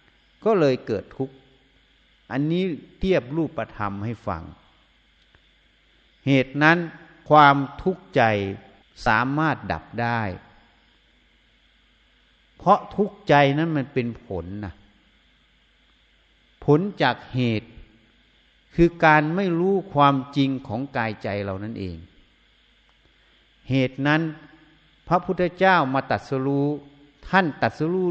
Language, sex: Thai, male